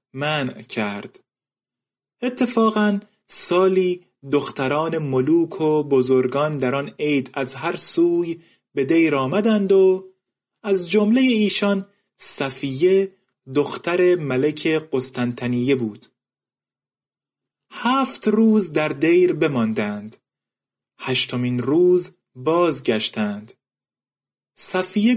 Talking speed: 85 wpm